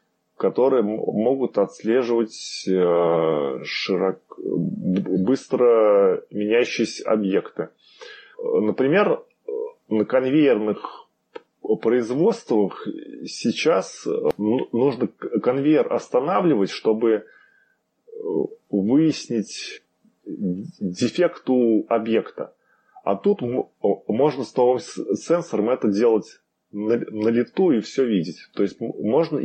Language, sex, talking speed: Russian, male, 70 wpm